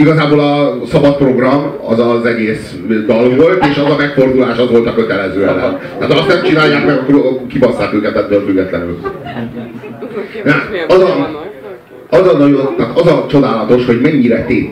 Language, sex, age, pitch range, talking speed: Hungarian, male, 40-59, 120-155 Hz, 165 wpm